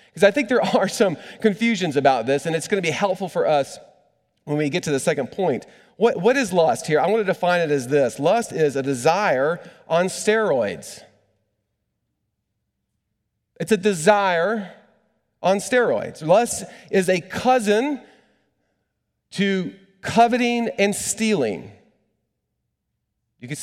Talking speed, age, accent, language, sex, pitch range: 145 wpm, 40-59, American, English, male, 135-195 Hz